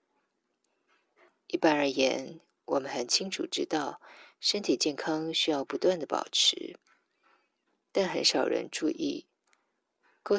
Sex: female